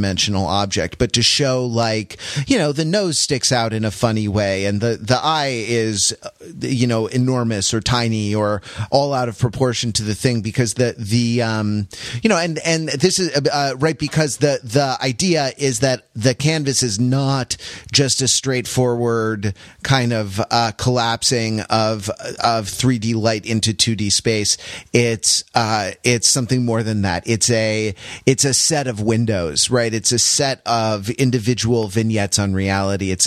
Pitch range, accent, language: 110-135 Hz, American, English